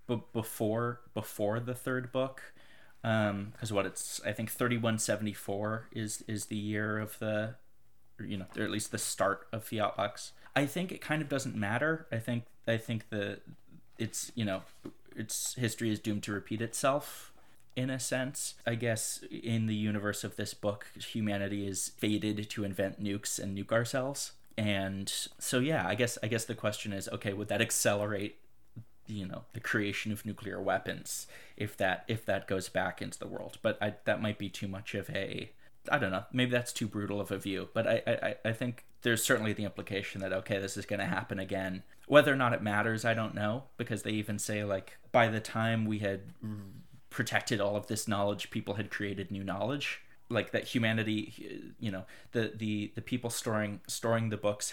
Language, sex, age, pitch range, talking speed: English, male, 20-39, 100-115 Hz, 195 wpm